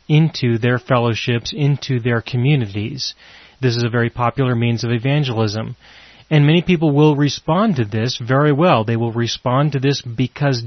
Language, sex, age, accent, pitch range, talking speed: English, male, 30-49, American, 115-140 Hz, 165 wpm